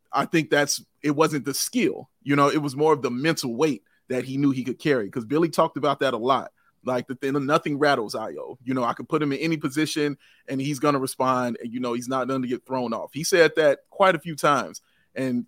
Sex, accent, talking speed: male, American, 260 wpm